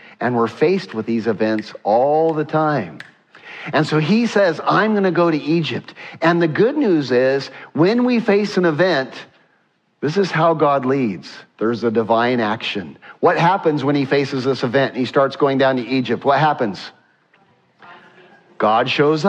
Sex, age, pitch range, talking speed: male, 50-69, 150-210 Hz, 175 wpm